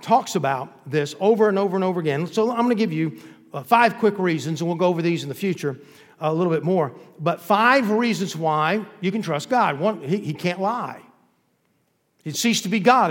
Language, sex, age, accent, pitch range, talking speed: English, male, 50-69, American, 160-220 Hz, 230 wpm